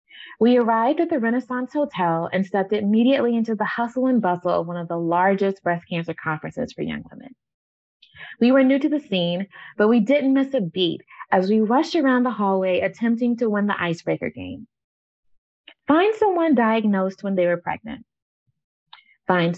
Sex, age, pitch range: female, 20-39, 190-260 Hz